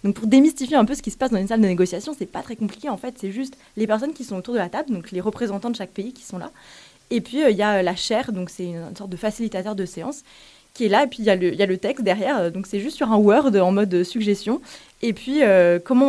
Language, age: French, 20-39